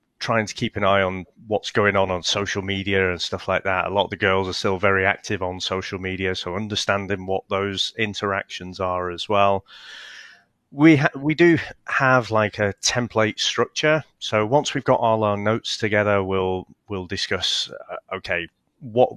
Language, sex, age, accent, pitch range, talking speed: English, male, 30-49, British, 95-115 Hz, 185 wpm